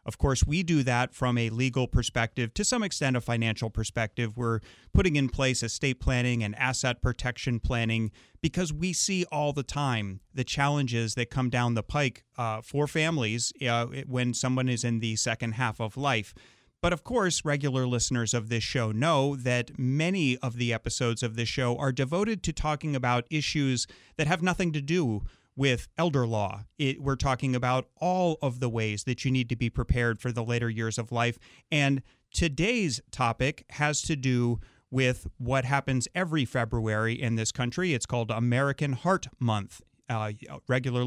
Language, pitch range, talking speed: English, 115-140 Hz, 180 wpm